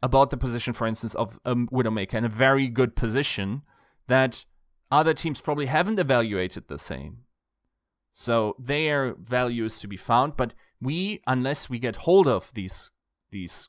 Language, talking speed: English, 165 wpm